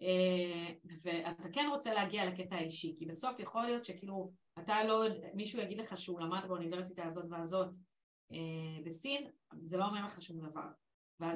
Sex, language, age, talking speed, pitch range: female, Hebrew, 30-49, 165 wpm, 175-220 Hz